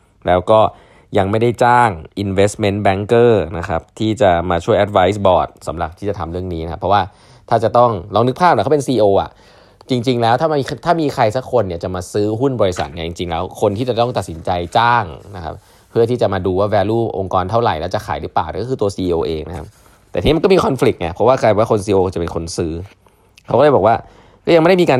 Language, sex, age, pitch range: Thai, male, 20-39, 90-120 Hz